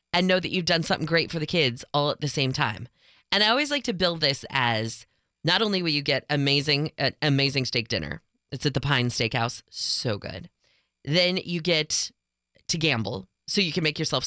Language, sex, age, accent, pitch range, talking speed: English, female, 20-39, American, 135-180 Hz, 205 wpm